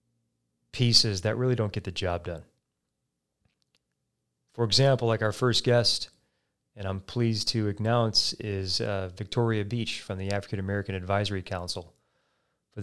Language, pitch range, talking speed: English, 95-115 Hz, 140 wpm